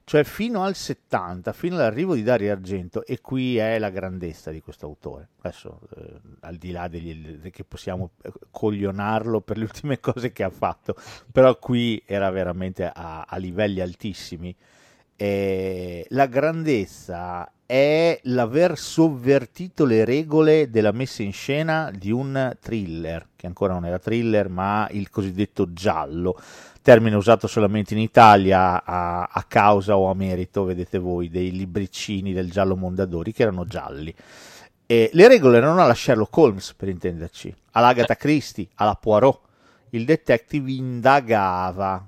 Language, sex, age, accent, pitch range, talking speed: Italian, male, 50-69, native, 90-125 Hz, 150 wpm